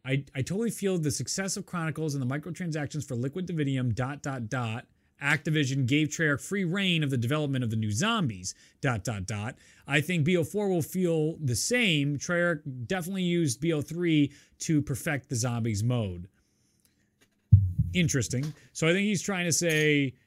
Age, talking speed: 30-49, 165 wpm